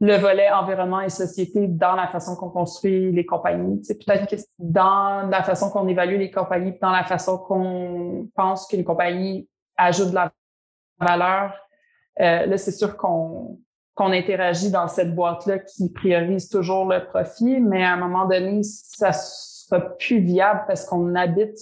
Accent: Canadian